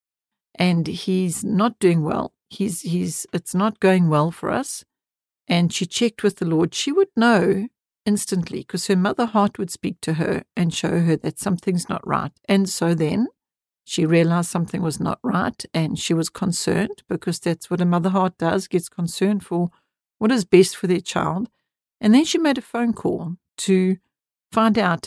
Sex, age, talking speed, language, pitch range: female, 60-79, 185 wpm, English, 170-205 Hz